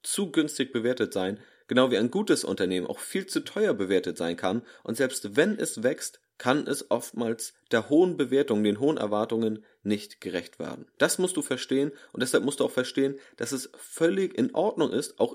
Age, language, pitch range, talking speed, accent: 30-49, German, 105-130 Hz, 195 wpm, German